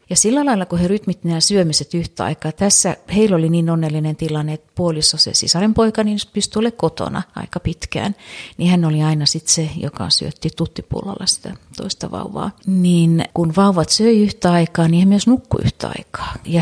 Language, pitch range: Finnish, 150-185 Hz